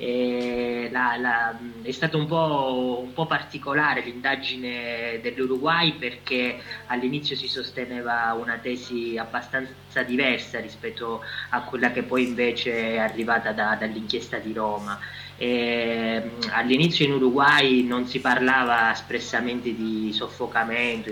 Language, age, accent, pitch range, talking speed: Italian, 20-39, native, 115-135 Hz, 115 wpm